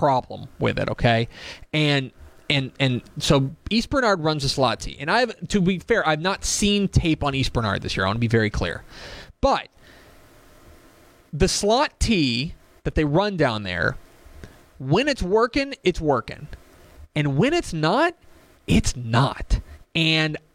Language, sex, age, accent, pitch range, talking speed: English, male, 30-49, American, 115-165 Hz, 165 wpm